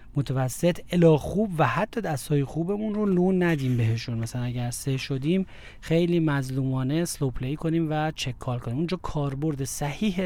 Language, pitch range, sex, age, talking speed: Persian, 130-155 Hz, male, 40-59, 160 wpm